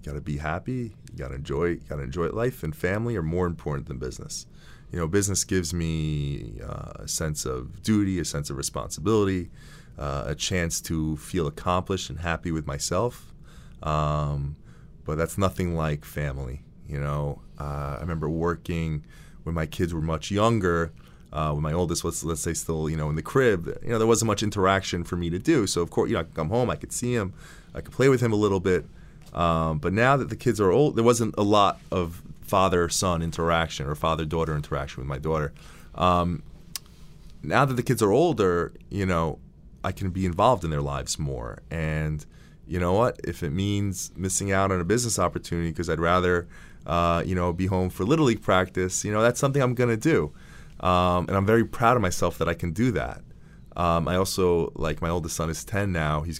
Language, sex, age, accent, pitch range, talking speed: English, male, 30-49, American, 80-95 Hz, 205 wpm